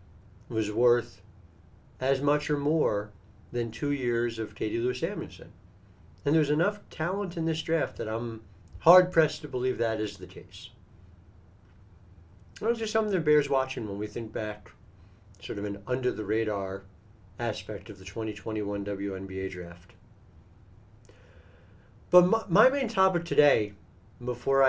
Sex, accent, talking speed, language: male, American, 135 wpm, English